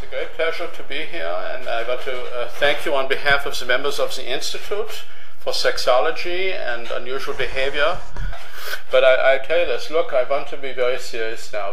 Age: 50-69